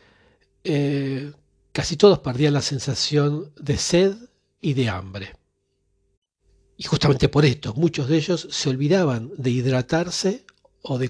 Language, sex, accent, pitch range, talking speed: Spanish, male, Argentinian, 115-155 Hz, 130 wpm